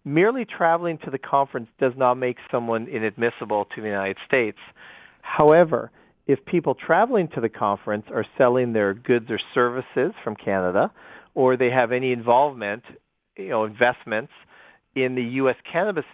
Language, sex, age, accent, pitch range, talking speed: English, male, 40-59, American, 115-130 Hz, 150 wpm